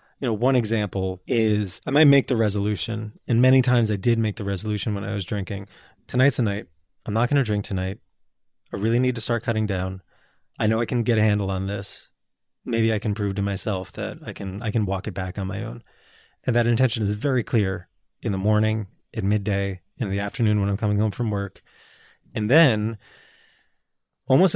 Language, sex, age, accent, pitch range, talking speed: English, male, 20-39, American, 100-125 Hz, 210 wpm